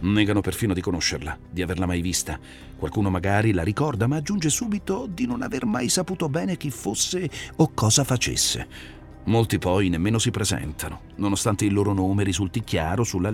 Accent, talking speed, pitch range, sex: native, 170 wpm, 90-125 Hz, male